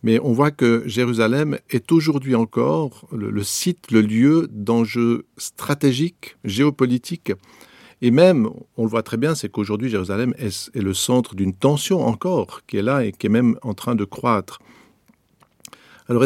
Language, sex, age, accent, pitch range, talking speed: French, male, 50-69, French, 105-130 Hz, 165 wpm